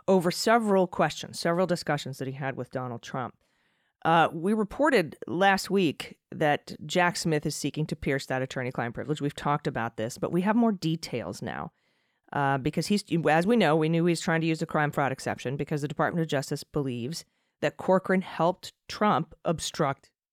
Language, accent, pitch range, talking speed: English, American, 150-195 Hz, 190 wpm